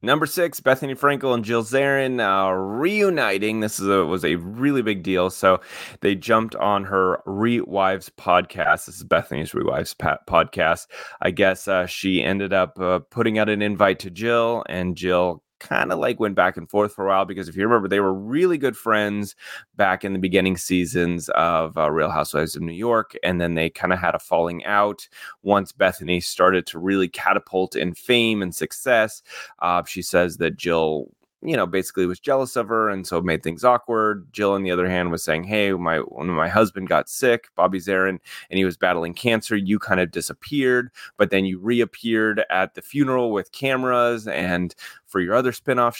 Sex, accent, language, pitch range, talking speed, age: male, American, English, 90-115 Hz, 195 wpm, 30-49